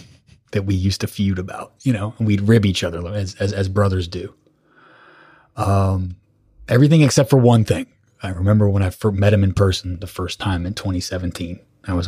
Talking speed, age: 195 wpm, 20-39